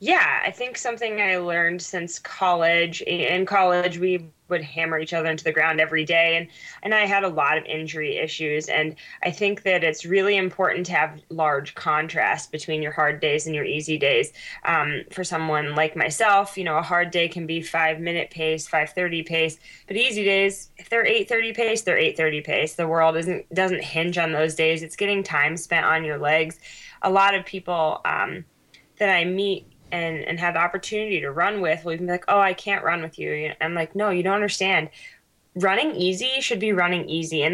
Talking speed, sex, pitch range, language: 210 wpm, female, 160-195 Hz, English